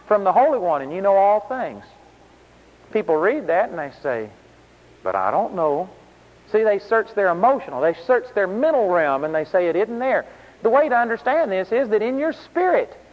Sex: male